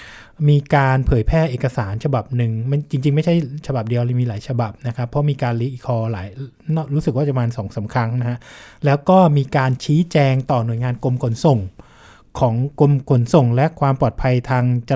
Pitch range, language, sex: 120-150 Hz, Thai, male